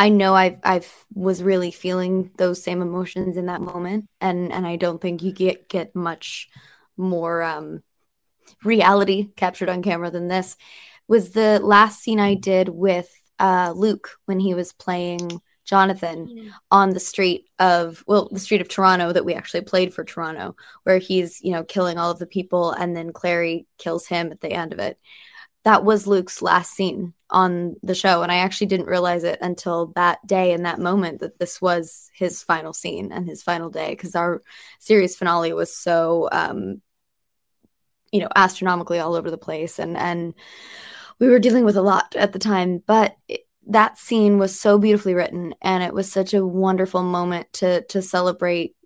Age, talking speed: 20-39, 185 wpm